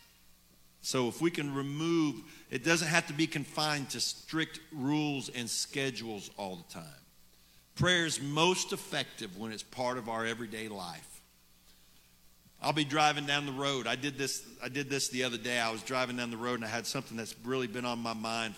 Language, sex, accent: English, male, American